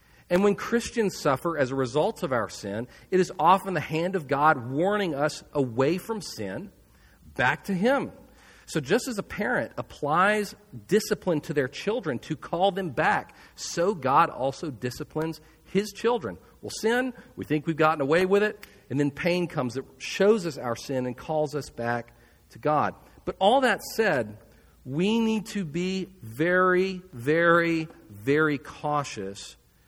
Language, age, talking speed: English, 40-59, 165 wpm